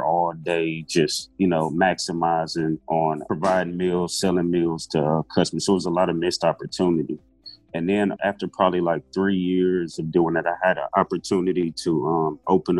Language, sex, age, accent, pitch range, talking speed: English, male, 30-49, American, 85-95 Hz, 180 wpm